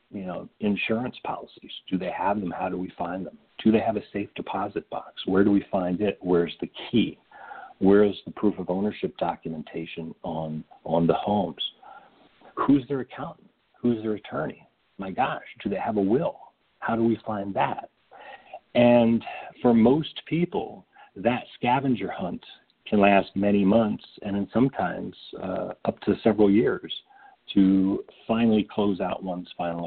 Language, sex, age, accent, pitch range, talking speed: English, male, 50-69, American, 95-115 Hz, 165 wpm